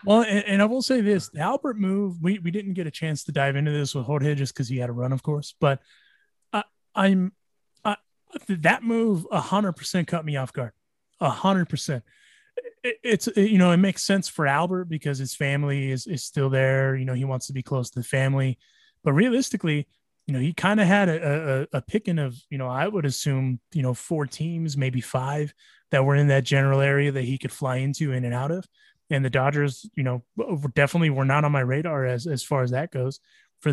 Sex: male